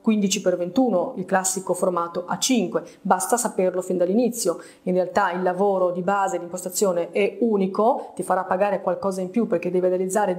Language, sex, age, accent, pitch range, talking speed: Italian, female, 30-49, native, 185-225 Hz, 170 wpm